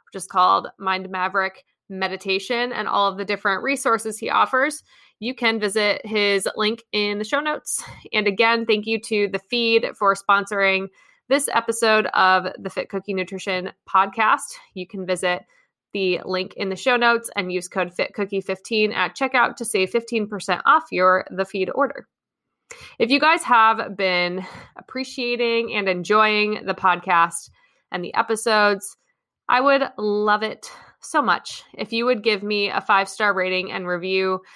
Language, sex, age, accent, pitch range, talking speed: English, female, 20-39, American, 190-235 Hz, 160 wpm